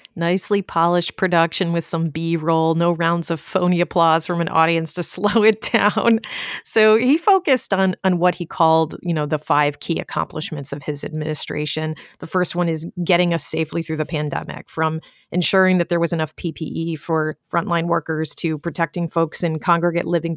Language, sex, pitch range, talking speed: English, female, 155-190 Hz, 180 wpm